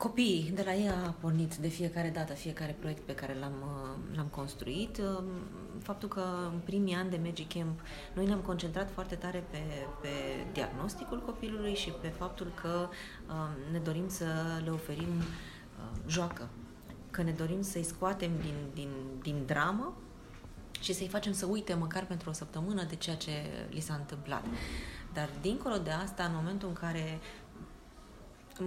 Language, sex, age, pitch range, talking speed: Romanian, female, 20-39, 160-195 Hz, 160 wpm